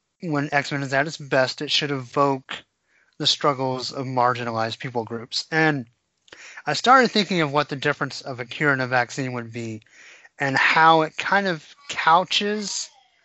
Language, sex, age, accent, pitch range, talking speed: English, male, 30-49, American, 125-160 Hz, 170 wpm